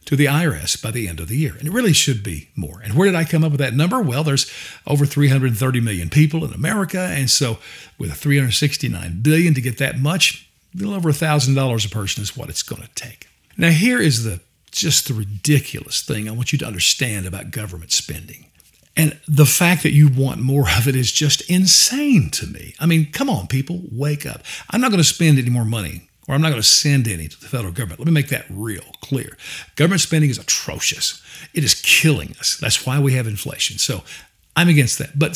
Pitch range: 120-160 Hz